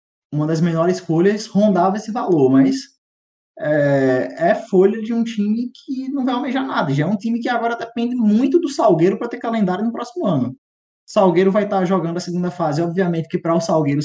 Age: 20-39